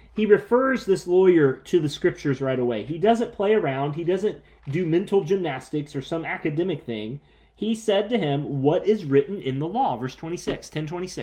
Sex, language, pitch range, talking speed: male, English, 140-180 Hz, 185 wpm